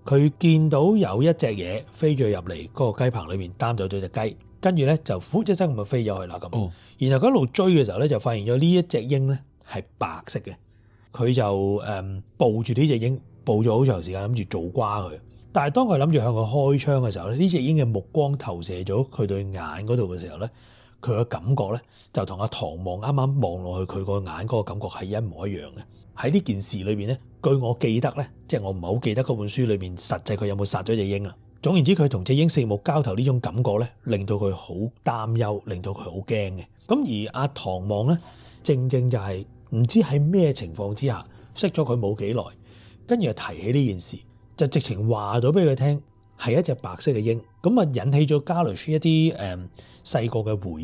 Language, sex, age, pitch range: Chinese, male, 30-49, 105-140 Hz